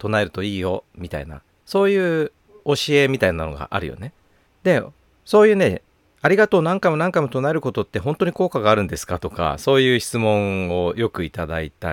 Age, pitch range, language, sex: 40-59, 90-150 Hz, Japanese, male